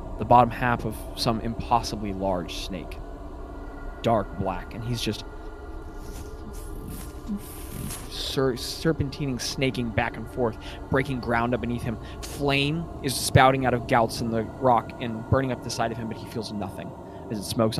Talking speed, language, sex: 155 wpm, English, male